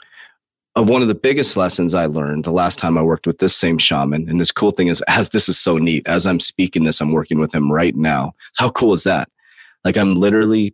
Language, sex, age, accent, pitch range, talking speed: English, male, 30-49, American, 80-95 Hz, 245 wpm